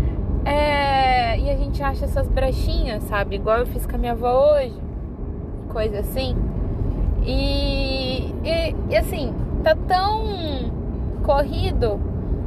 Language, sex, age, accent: Portuguese, female, 10-29, Brazilian